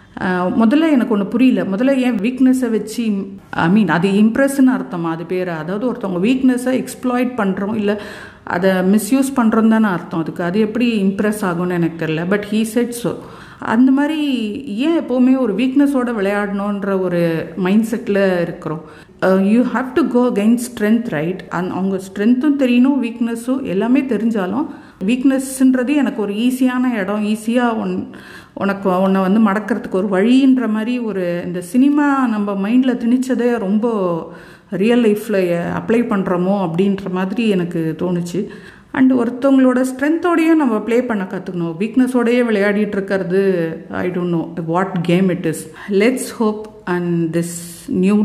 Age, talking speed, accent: 50-69, 135 wpm, native